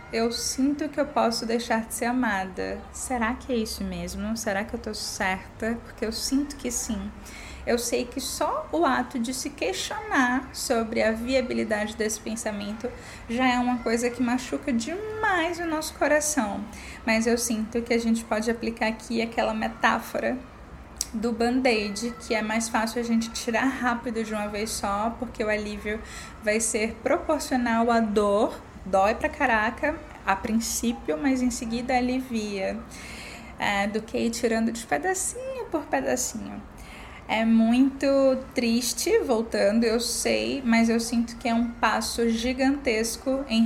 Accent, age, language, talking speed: Brazilian, 10-29, Portuguese, 155 wpm